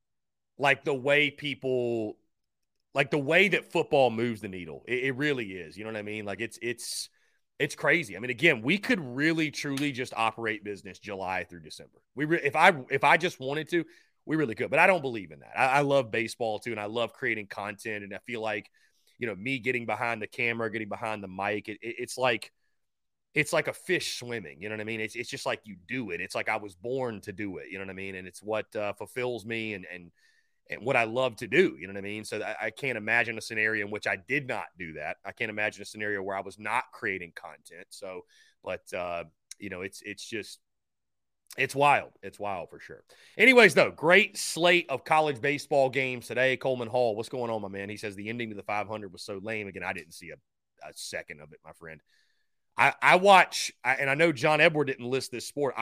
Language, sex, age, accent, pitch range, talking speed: English, male, 30-49, American, 105-135 Hz, 235 wpm